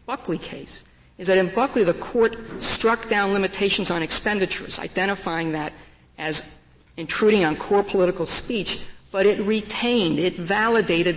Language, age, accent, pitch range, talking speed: English, 50-69, American, 170-210 Hz, 140 wpm